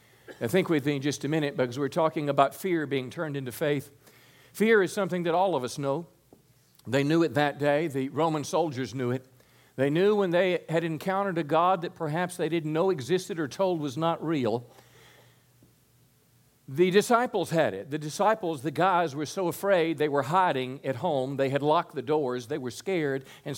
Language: English